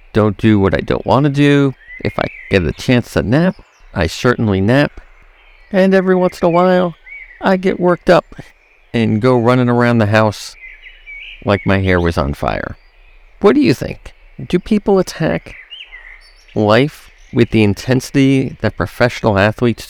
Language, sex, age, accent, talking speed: English, male, 50-69, American, 165 wpm